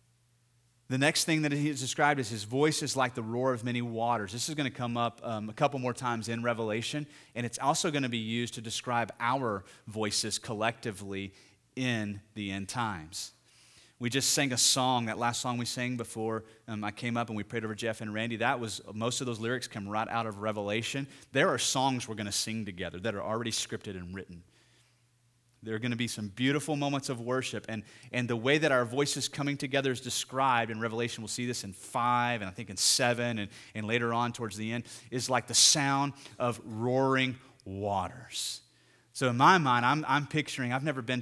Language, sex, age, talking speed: English, male, 30-49, 220 wpm